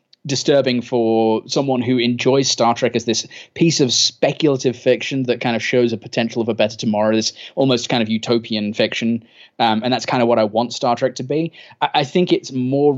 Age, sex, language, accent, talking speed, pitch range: 20-39, male, English, British, 215 wpm, 115-130 Hz